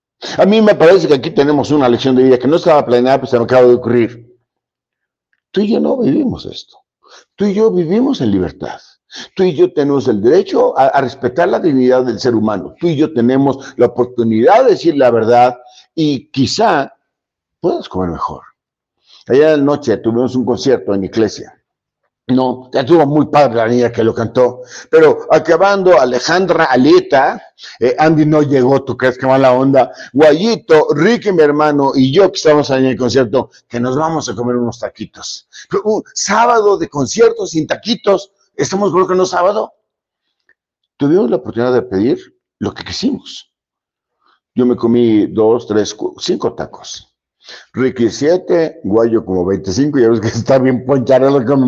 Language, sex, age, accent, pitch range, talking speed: Spanish, male, 50-69, Mexican, 120-160 Hz, 180 wpm